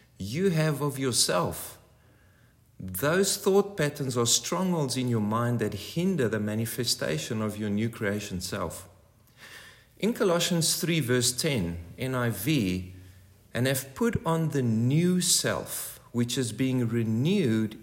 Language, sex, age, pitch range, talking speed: English, male, 40-59, 105-145 Hz, 130 wpm